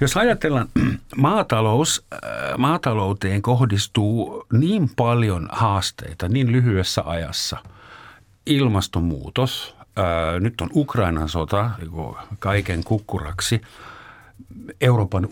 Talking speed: 75 wpm